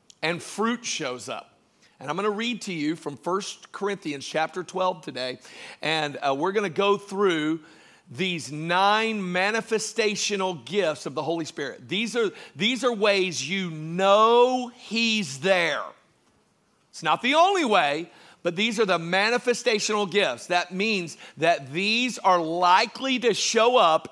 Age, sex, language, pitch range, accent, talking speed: 50-69, male, English, 180-230 Hz, American, 150 wpm